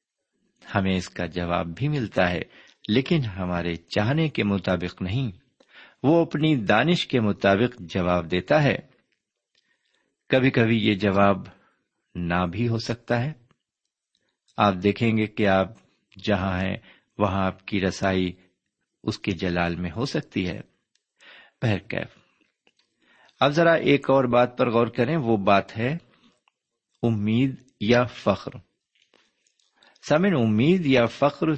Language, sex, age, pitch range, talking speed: Urdu, male, 50-69, 95-130 Hz, 125 wpm